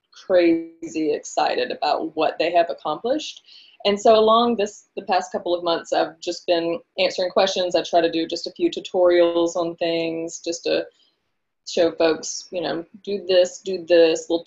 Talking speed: 175 wpm